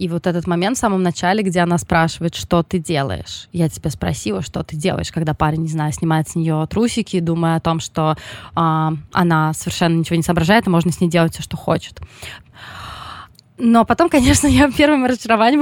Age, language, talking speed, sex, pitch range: 20-39, Russian, 195 wpm, female, 170-225 Hz